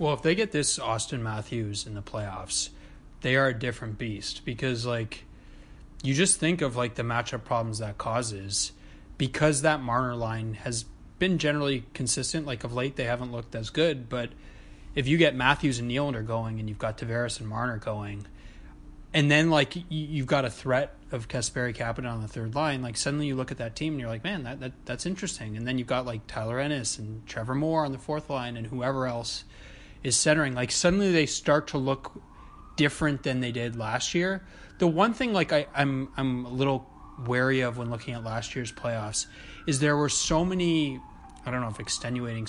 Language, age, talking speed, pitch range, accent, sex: English, 20-39, 205 wpm, 115-145 Hz, American, male